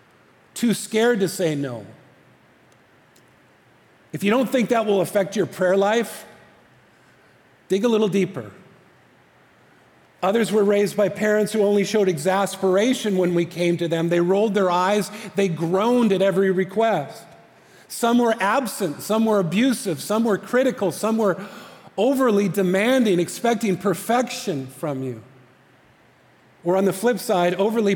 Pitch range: 185-225 Hz